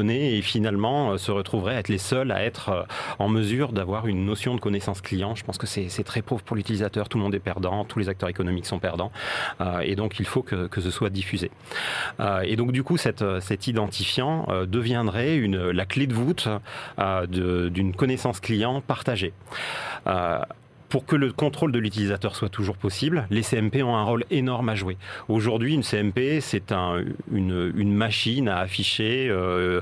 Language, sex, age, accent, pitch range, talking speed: French, male, 40-59, French, 100-125 Hz, 190 wpm